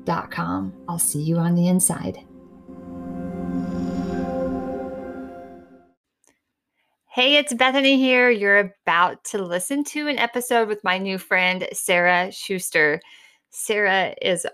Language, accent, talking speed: English, American, 105 wpm